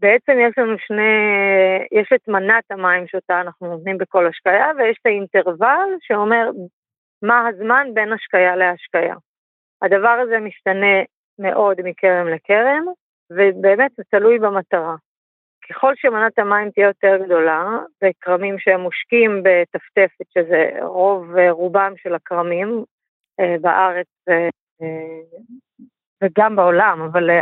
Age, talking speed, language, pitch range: 30-49, 110 wpm, Hebrew, 185-240 Hz